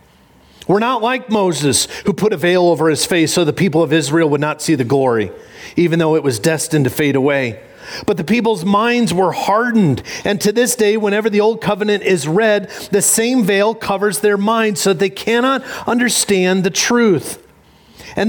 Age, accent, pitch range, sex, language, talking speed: 40-59, American, 145-205 Hz, male, English, 190 wpm